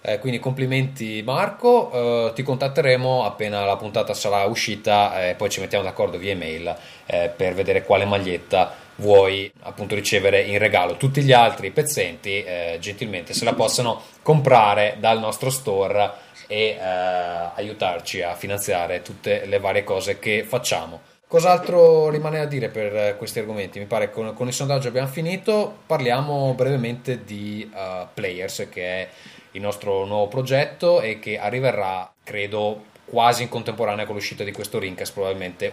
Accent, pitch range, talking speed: native, 100-135 Hz, 155 wpm